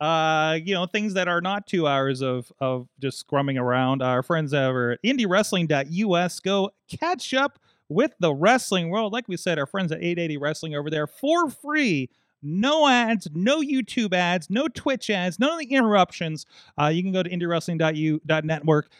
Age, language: 30-49, English